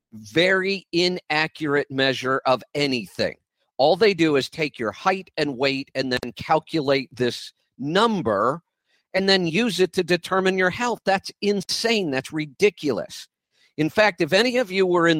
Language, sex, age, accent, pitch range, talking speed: English, male, 50-69, American, 130-170 Hz, 155 wpm